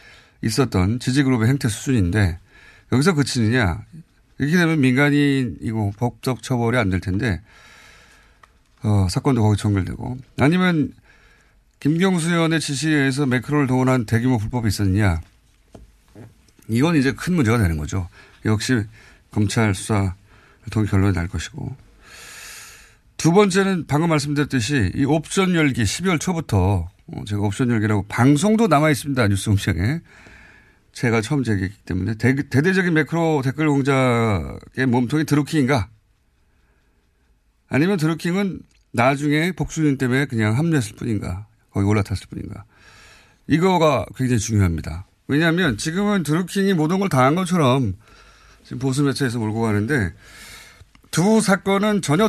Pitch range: 105-150 Hz